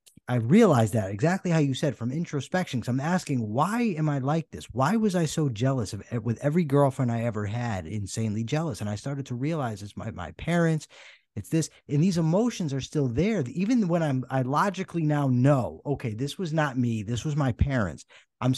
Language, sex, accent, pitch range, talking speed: English, male, American, 115-155 Hz, 210 wpm